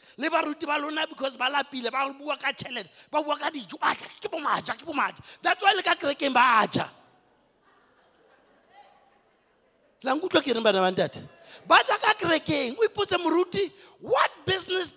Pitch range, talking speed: 245-345 Hz, 110 wpm